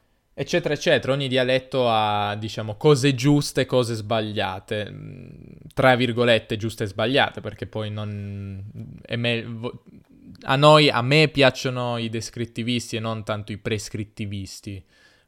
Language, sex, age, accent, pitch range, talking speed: Italian, male, 20-39, native, 105-130 Hz, 120 wpm